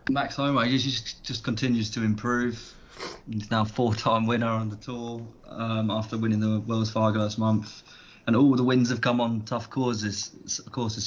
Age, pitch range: 20-39, 105-115 Hz